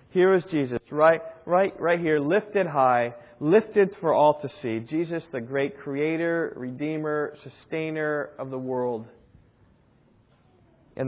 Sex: male